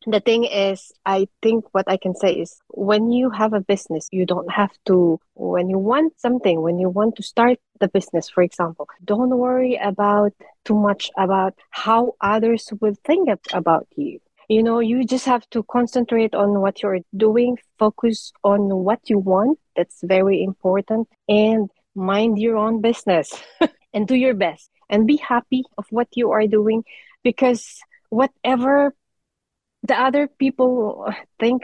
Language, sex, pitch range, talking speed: English, female, 200-240 Hz, 165 wpm